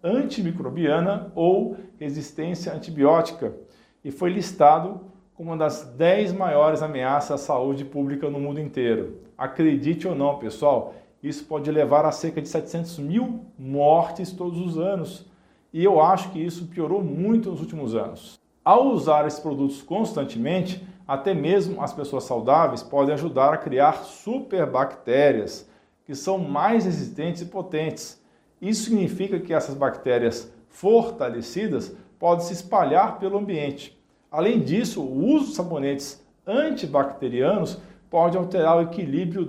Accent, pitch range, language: Brazilian, 145-190 Hz, Portuguese